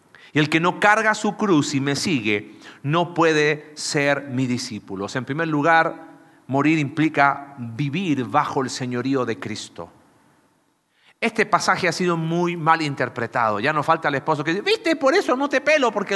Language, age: Spanish, 40-59